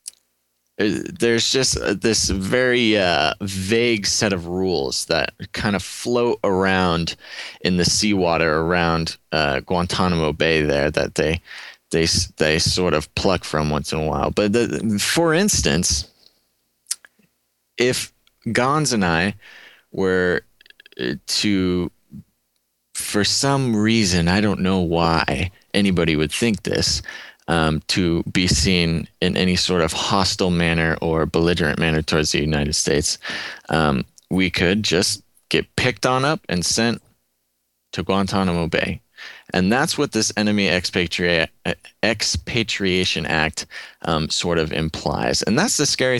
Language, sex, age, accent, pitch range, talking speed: English, male, 30-49, American, 80-105 Hz, 130 wpm